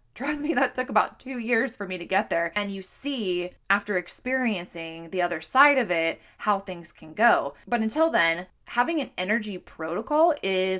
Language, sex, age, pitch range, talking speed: English, female, 20-39, 180-235 Hz, 190 wpm